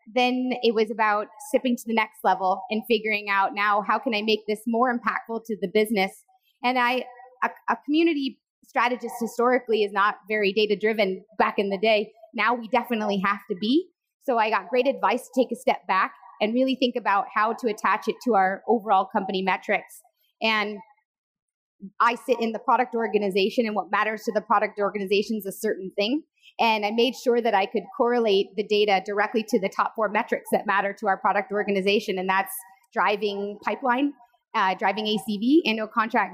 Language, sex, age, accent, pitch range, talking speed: English, female, 30-49, American, 205-240 Hz, 190 wpm